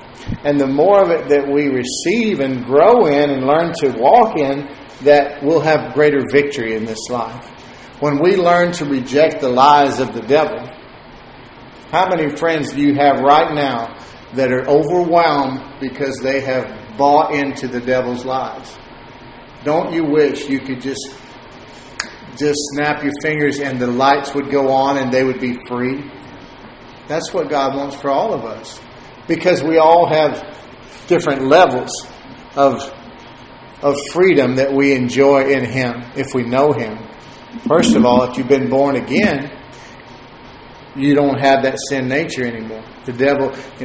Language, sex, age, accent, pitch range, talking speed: English, male, 50-69, American, 130-145 Hz, 160 wpm